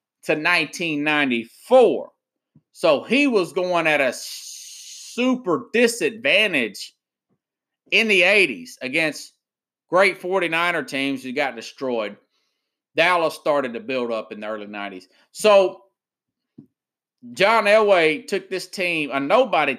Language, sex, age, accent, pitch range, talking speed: English, male, 30-49, American, 150-205 Hz, 110 wpm